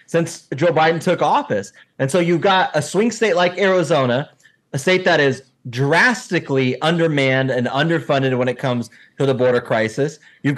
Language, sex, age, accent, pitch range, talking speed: English, male, 30-49, American, 140-170 Hz, 170 wpm